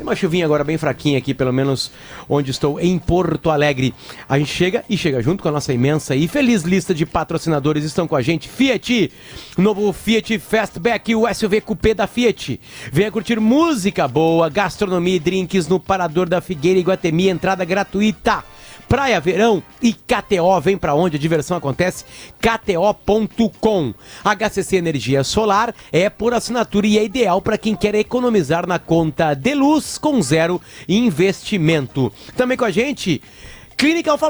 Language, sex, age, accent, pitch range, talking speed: Portuguese, male, 40-59, Brazilian, 155-210 Hz, 165 wpm